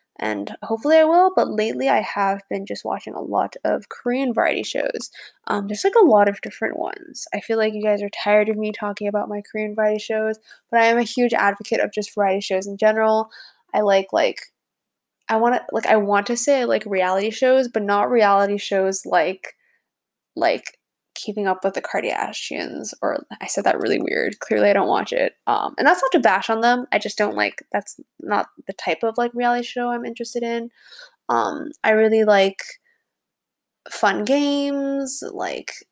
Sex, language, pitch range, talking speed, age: female, English, 205-245 Hz, 200 wpm, 10-29